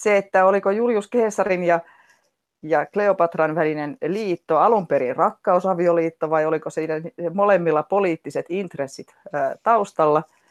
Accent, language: native, Finnish